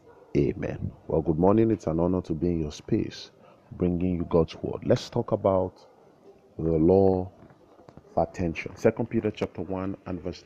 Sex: male